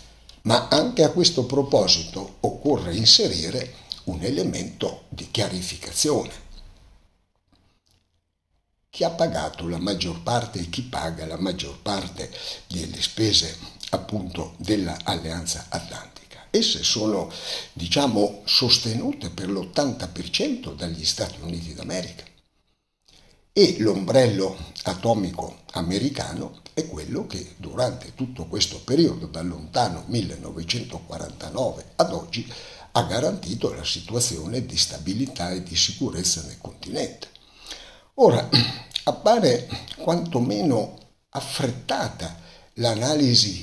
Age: 60-79